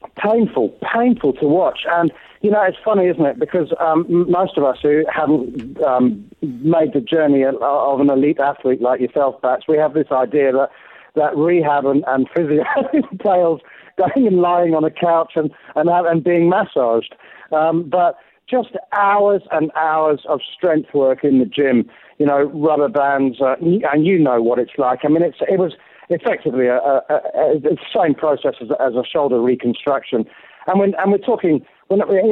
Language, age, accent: English, 40-59, British